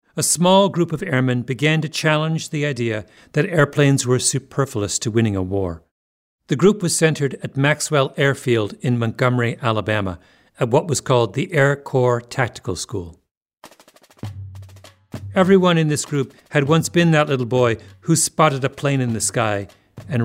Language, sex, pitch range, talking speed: English, male, 105-150 Hz, 165 wpm